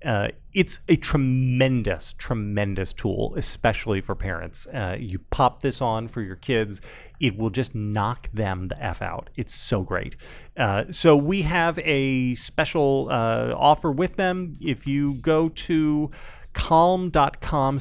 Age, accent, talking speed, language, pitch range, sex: 30-49, American, 145 wpm, English, 105-140 Hz, male